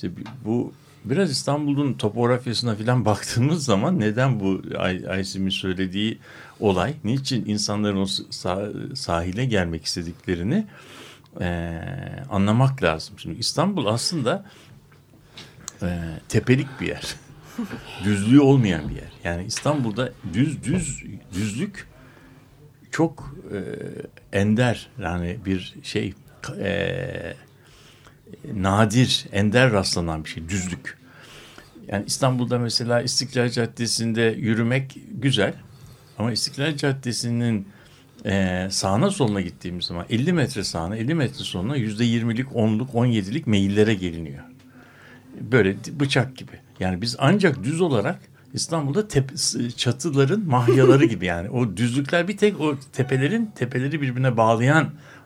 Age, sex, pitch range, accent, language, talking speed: 60-79, male, 100-135 Hz, native, Turkish, 110 wpm